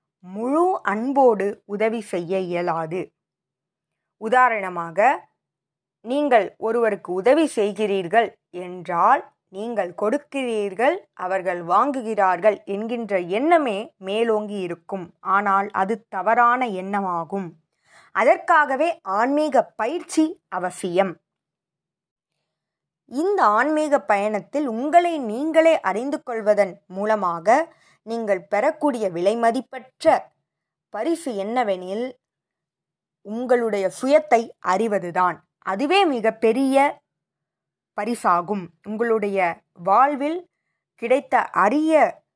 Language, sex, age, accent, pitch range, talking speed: Tamil, female, 20-39, native, 190-265 Hz, 70 wpm